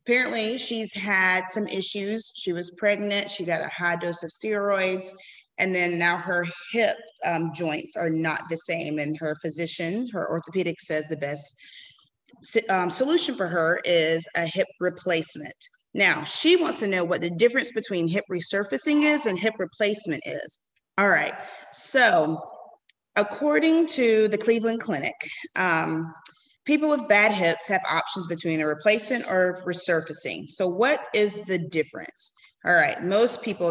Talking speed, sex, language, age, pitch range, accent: 155 wpm, female, English, 30-49, 165-210 Hz, American